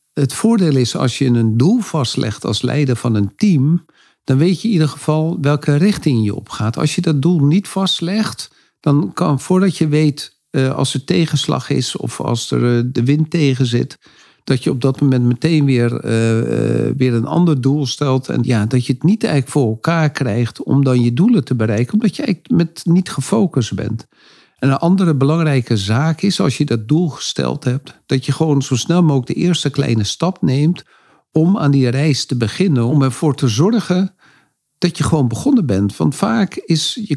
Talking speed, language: 195 wpm, Dutch